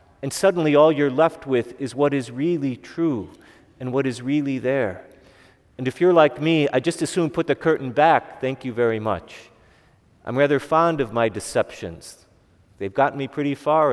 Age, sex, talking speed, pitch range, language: 40-59, male, 190 wpm, 120-145 Hz, English